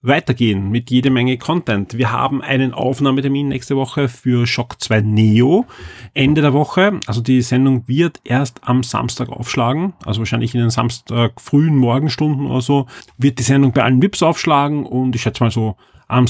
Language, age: German, 40-59